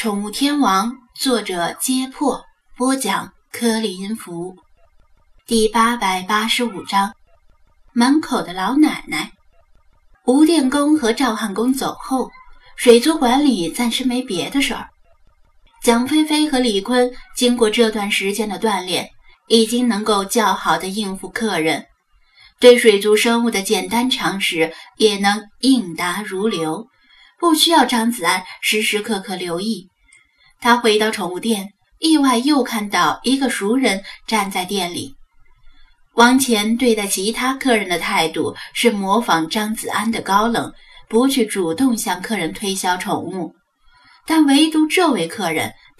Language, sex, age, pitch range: Chinese, female, 10-29, 195-255 Hz